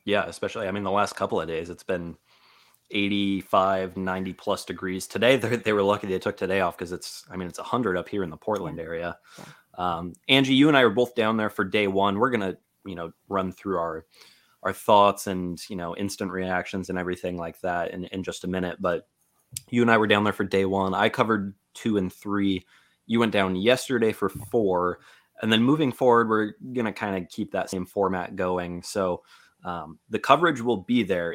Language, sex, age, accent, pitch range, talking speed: English, male, 20-39, American, 90-105 Hz, 215 wpm